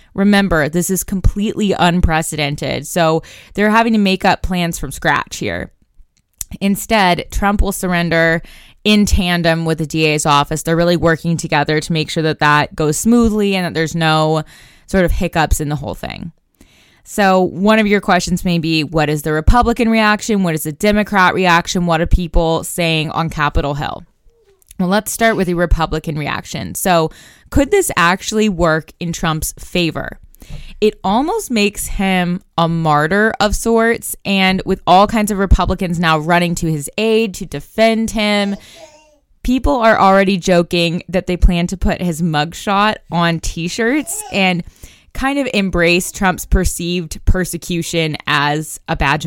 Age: 20-39